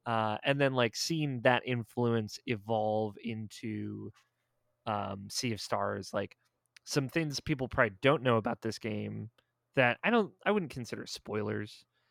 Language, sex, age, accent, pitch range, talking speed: English, male, 20-39, American, 110-130 Hz, 150 wpm